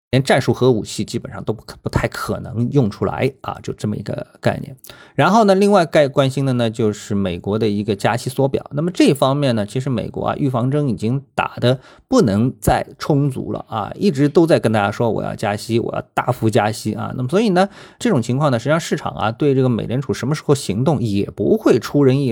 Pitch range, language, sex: 110-145 Hz, Chinese, male